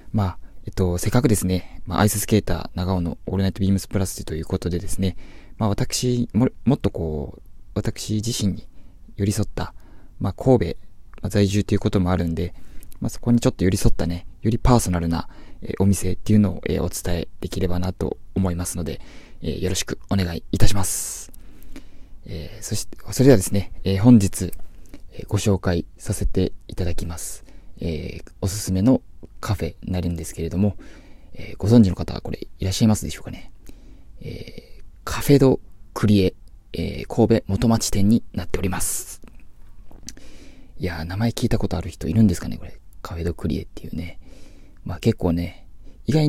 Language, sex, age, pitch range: Japanese, male, 20-39, 85-105 Hz